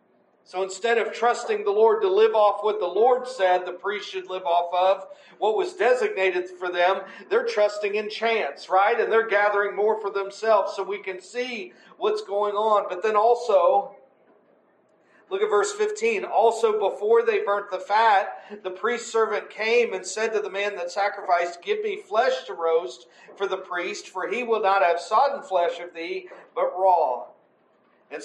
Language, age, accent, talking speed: English, 40-59, American, 185 wpm